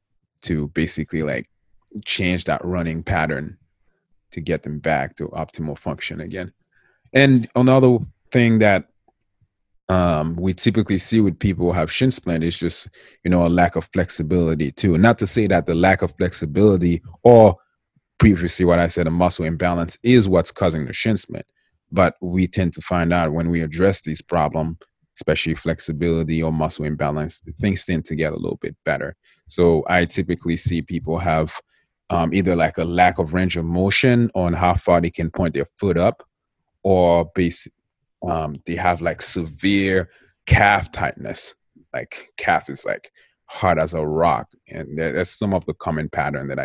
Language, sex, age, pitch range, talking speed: English, male, 30-49, 80-95 Hz, 170 wpm